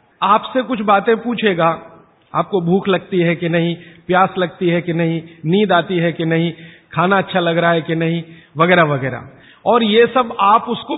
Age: 50-69